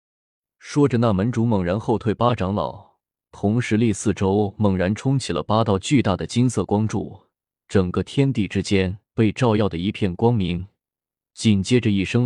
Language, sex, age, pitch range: Chinese, male, 20-39, 95-115 Hz